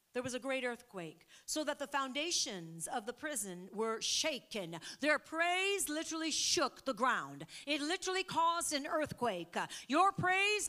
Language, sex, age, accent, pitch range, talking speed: English, female, 50-69, American, 255-350 Hz, 150 wpm